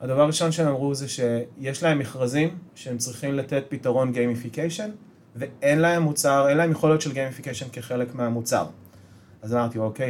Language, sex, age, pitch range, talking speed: English, male, 30-49, 120-150 Hz, 145 wpm